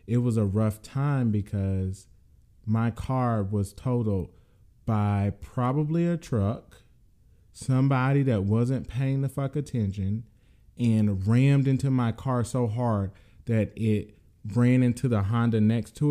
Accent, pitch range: American, 100-120 Hz